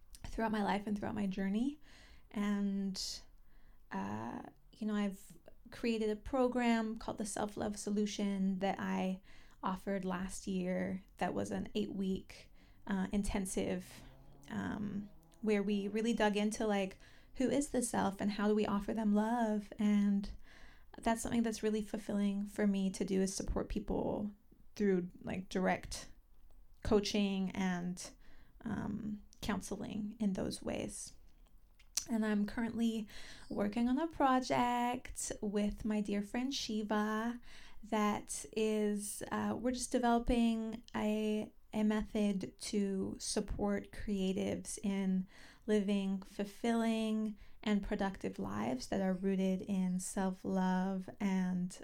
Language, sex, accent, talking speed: English, female, American, 125 wpm